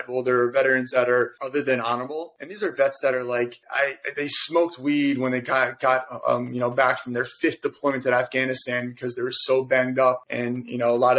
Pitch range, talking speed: 125-140 Hz, 235 wpm